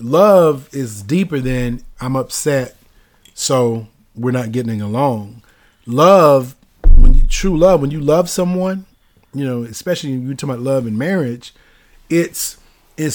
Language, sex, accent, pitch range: English, male, American, 120-155 Hz